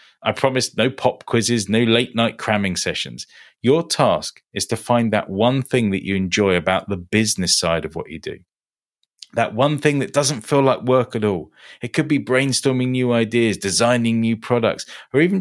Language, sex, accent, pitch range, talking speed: English, male, British, 100-135 Hz, 195 wpm